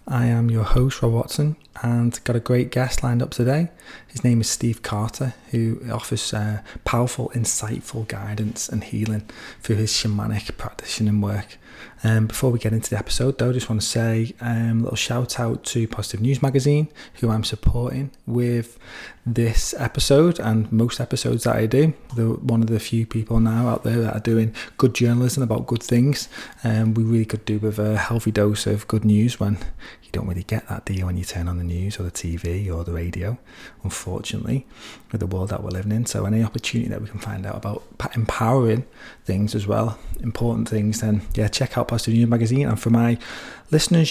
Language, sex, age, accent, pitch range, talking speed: English, male, 20-39, British, 105-120 Hz, 200 wpm